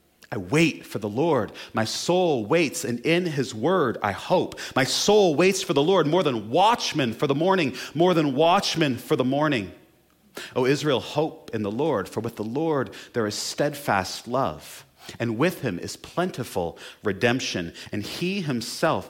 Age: 30-49